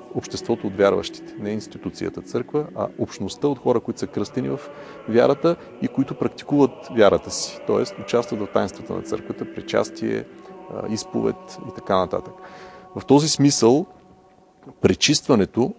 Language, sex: Bulgarian, male